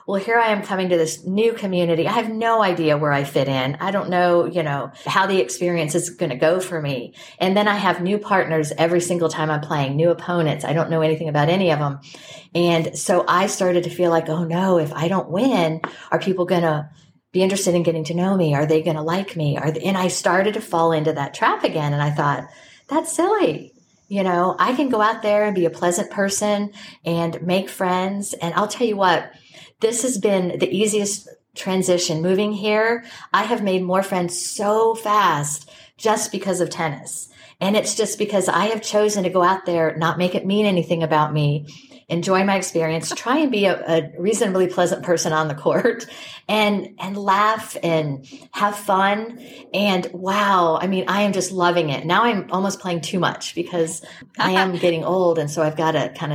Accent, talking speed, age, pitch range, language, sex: American, 210 wpm, 50-69, 160-195 Hz, English, female